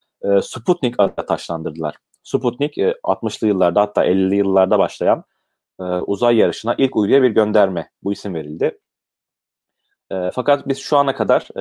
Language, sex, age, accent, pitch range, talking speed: Turkish, male, 30-49, native, 100-125 Hz, 125 wpm